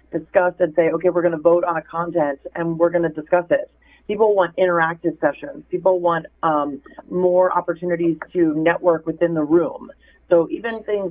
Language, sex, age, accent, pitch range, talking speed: English, female, 40-59, American, 165-185 Hz, 185 wpm